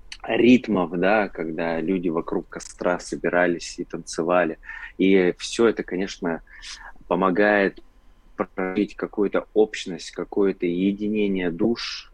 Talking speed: 100 wpm